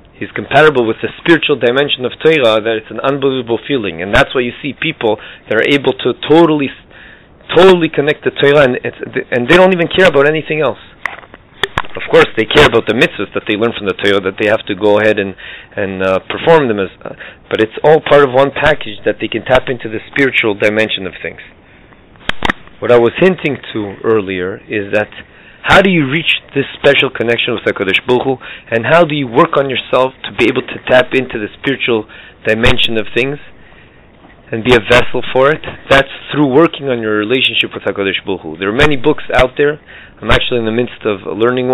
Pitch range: 110-145 Hz